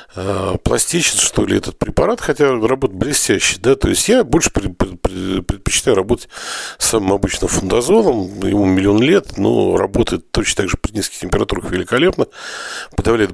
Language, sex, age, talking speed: Russian, male, 40-59, 145 wpm